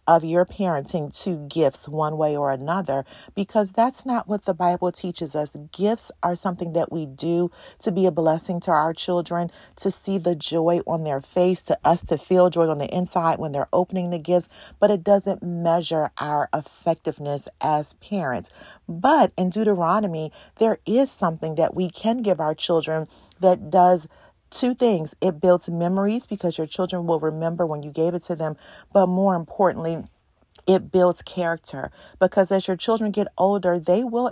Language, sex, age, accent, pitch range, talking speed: English, female, 40-59, American, 155-185 Hz, 180 wpm